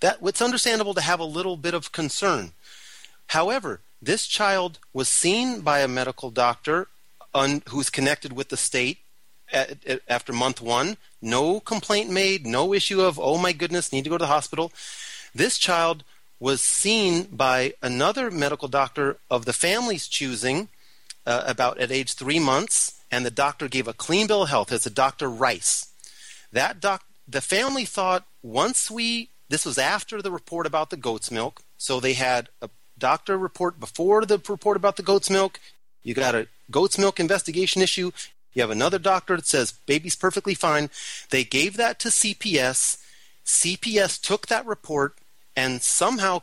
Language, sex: English, male